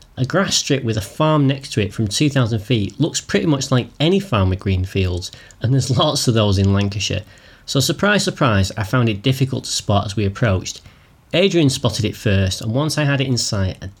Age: 30-49